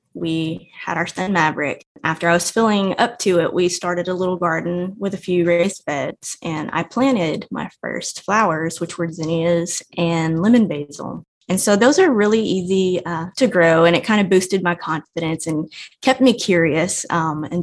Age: 20-39